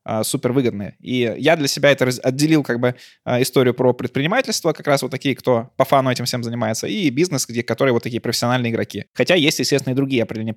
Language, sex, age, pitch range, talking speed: Russian, male, 20-39, 115-140 Hz, 210 wpm